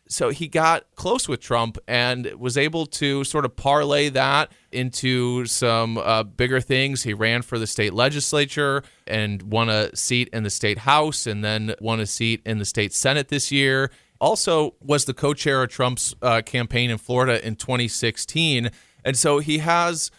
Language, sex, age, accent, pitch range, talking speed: English, male, 30-49, American, 110-135 Hz, 180 wpm